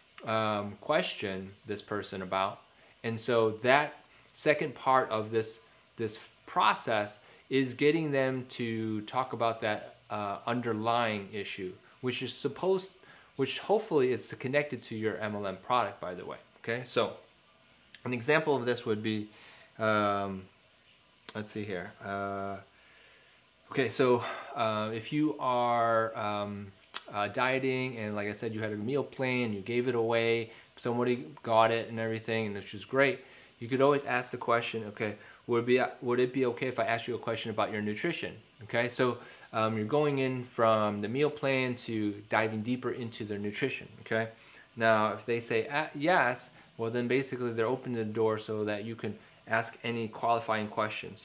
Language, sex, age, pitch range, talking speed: English, male, 20-39, 105-125 Hz, 165 wpm